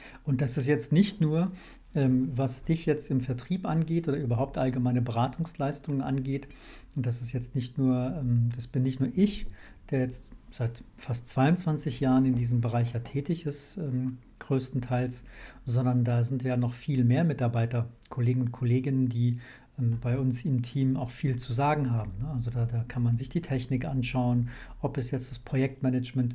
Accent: German